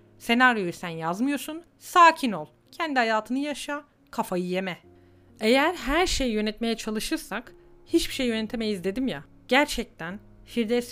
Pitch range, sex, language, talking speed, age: 175-245 Hz, female, Turkish, 120 wpm, 40-59